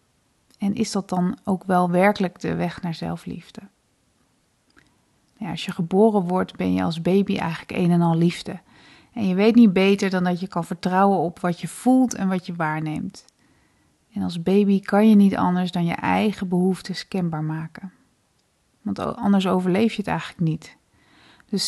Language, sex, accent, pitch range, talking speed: Dutch, female, Dutch, 180-205 Hz, 175 wpm